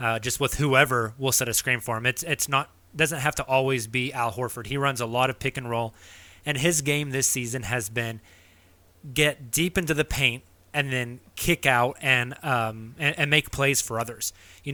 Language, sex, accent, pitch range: English, male, American, 120-150 Hz